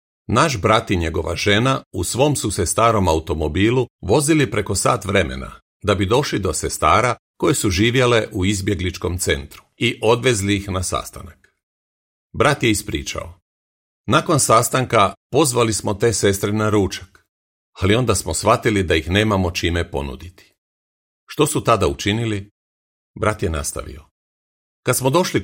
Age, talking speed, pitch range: 40-59, 145 wpm, 80-115 Hz